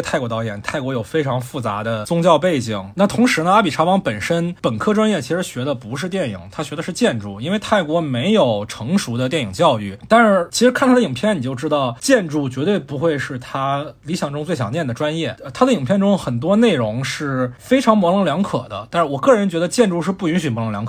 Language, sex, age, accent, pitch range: Chinese, male, 20-39, native, 130-200 Hz